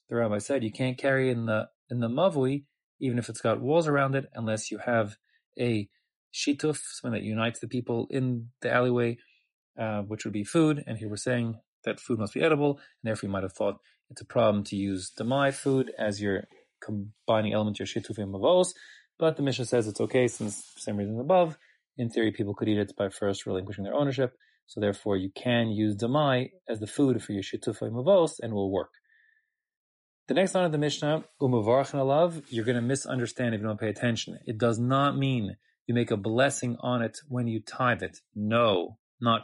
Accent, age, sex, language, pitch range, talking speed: Canadian, 30-49, male, English, 110-135 Hz, 210 wpm